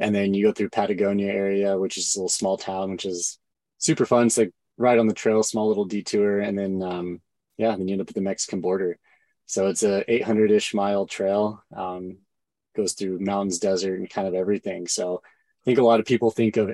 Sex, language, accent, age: male, English, American, 20-39